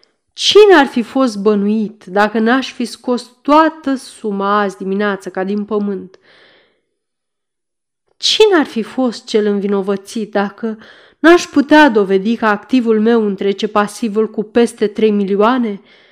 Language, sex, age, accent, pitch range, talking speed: Romanian, female, 30-49, native, 195-245 Hz, 130 wpm